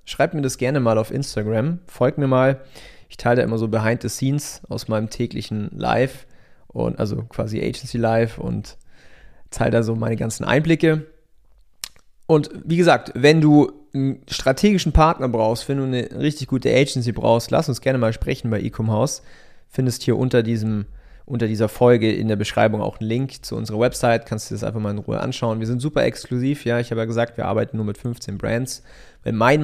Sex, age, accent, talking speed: male, 30-49, German, 195 wpm